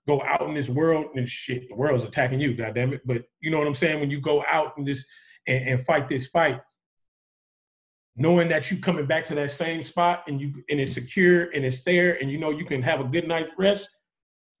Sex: male